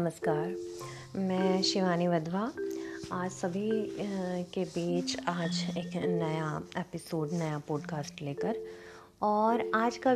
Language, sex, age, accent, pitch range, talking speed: Hindi, female, 30-49, native, 160-230 Hz, 105 wpm